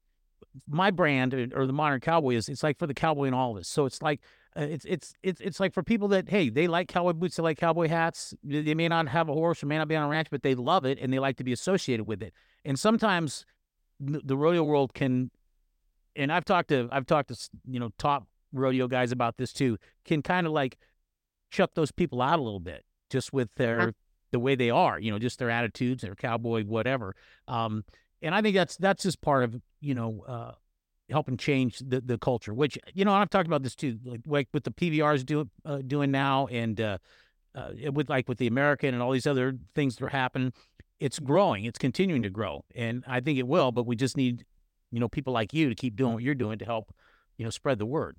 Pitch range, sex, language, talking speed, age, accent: 120-155 Hz, male, English, 240 wpm, 50-69, American